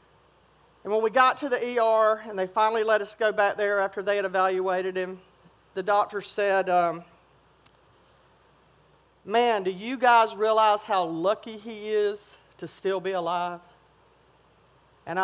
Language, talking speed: English, 150 wpm